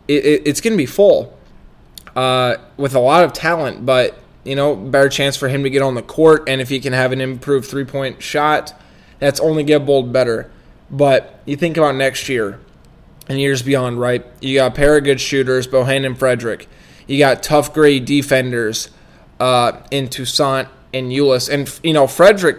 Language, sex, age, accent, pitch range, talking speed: English, male, 20-39, American, 130-145 Hz, 195 wpm